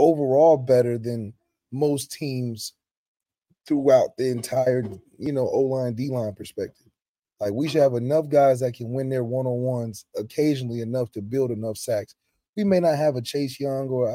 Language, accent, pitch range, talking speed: English, American, 120-150 Hz, 160 wpm